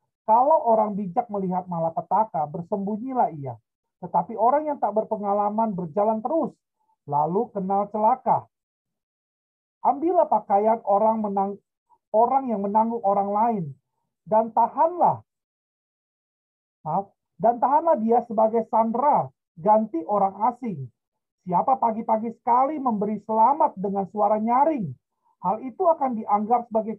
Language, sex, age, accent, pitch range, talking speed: Indonesian, male, 40-59, native, 205-260 Hz, 110 wpm